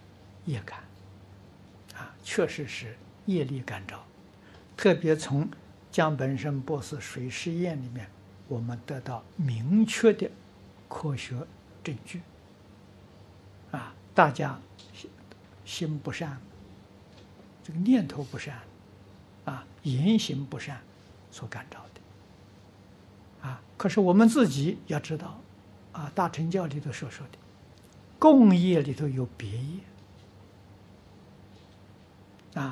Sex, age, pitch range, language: male, 60-79, 100-150 Hz, Chinese